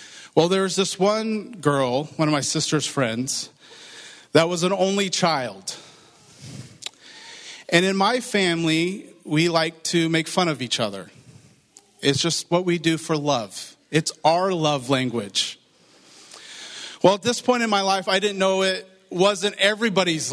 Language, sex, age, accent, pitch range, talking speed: English, male, 40-59, American, 155-200 Hz, 150 wpm